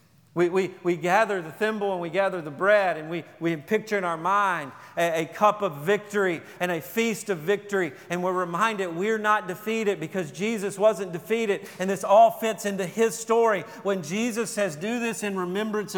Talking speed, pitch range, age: 190 wpm, 140-195 Hz, 40-59